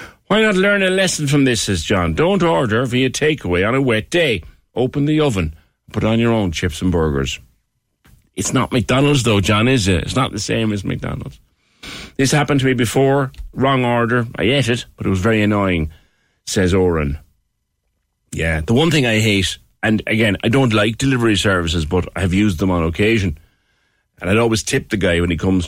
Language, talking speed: English, 200 wpm